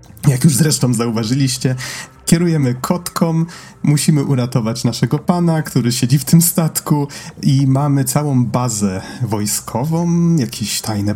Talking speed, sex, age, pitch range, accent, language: 120 wpm, male, 30-49, 110-145 Hz, native, Polish